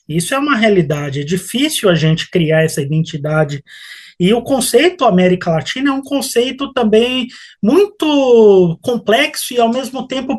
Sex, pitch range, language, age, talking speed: male, 195-275 Hz, Portuguese, 20-39, 150 wpm